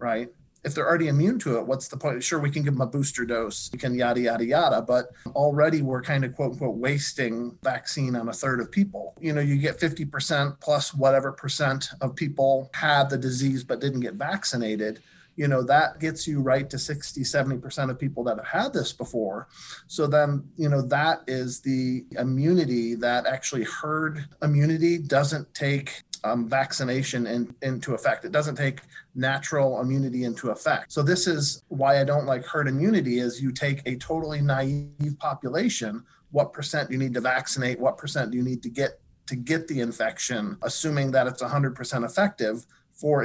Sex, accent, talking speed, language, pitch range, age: male, American, 190 wpm, English, 130-150 Hz, 40-59